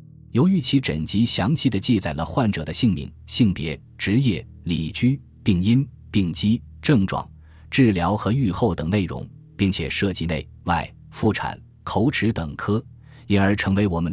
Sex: male